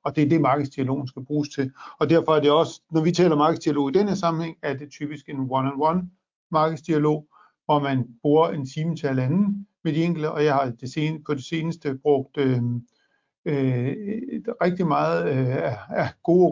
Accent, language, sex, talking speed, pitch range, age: native, Danish, male, 175 wpm, 145-170 Hz, 50-69